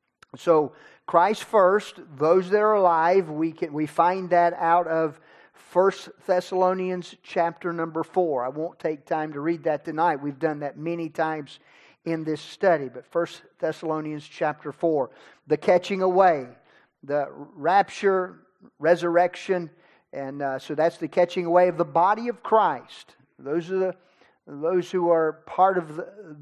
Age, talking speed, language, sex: 40-59, 150 wpm, English, male